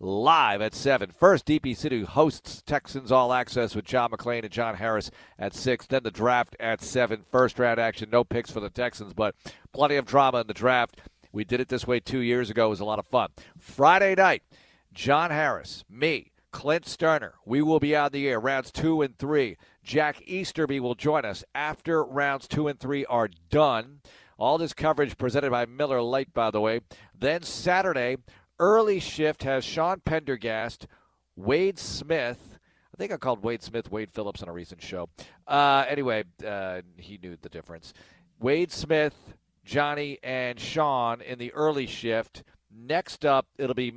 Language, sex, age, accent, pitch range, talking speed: English, male, 50-69, American, 115-150 Hz, 180 wpm